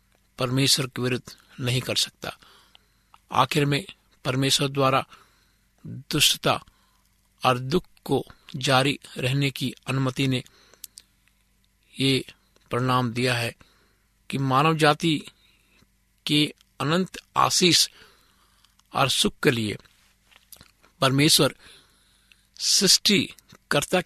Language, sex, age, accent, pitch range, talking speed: Hindi, male, 50-69, native, 110-140 Hz, 85 wpm